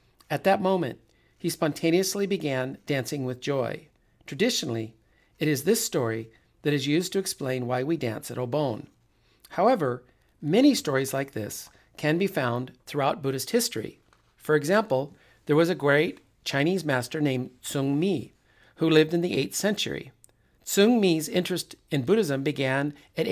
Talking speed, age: 150 wpm, 50-69